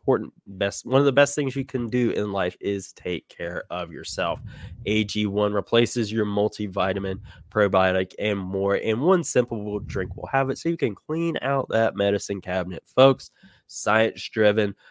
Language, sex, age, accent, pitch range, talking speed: English, male, 20-39, American, 100-130 Hz, 165 wpm